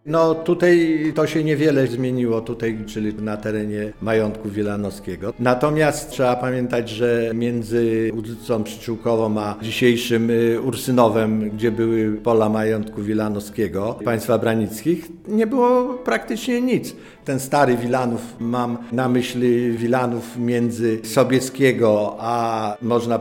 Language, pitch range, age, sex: Polish, 110-140 Hz, 50-69, male